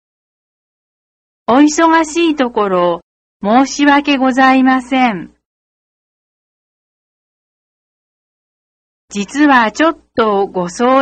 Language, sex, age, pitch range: Chinese, female, 40-59, 190-285 Hz